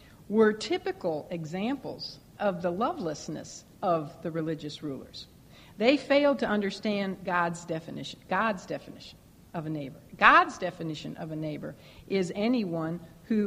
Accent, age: American, 60-79